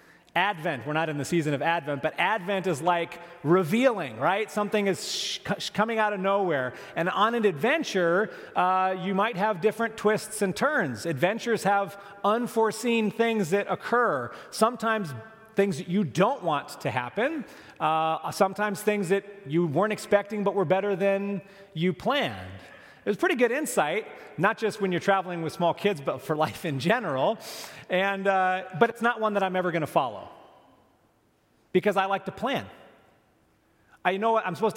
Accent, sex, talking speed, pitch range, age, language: American, male, 170 wpm, 165-205 Hz, 30-49, English